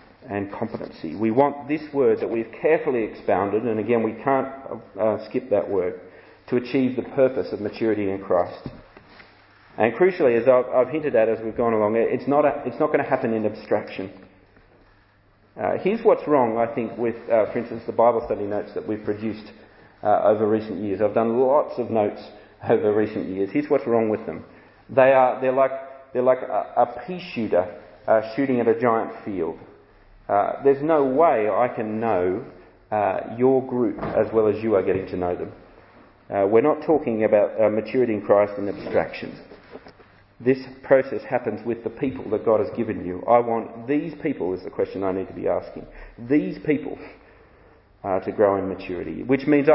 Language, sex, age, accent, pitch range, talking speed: English, male, 40-59, Australian, 105-130 Hz, 190 wpm